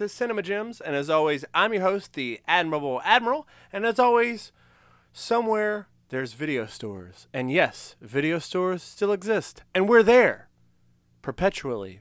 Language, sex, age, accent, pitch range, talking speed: English, male, 30-49, American, 115-185 Hz, 145 wpm